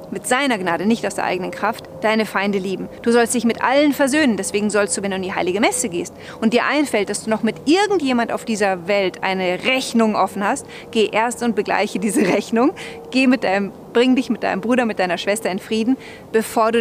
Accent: German